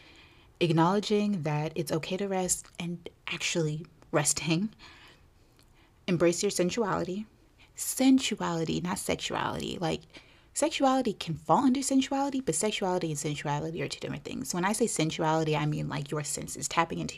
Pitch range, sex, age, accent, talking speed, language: 150-185 Hz, female, 30-49, American, 140 wpm, English